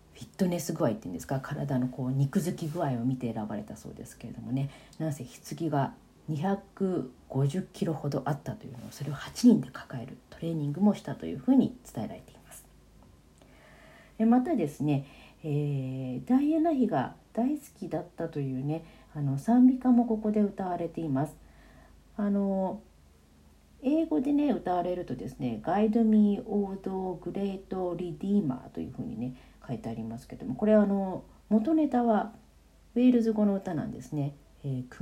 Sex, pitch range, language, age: female, 130-215 Hz, Japanese, 40-59